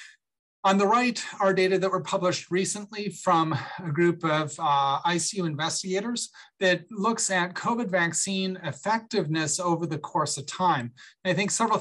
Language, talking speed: English, 150 wpm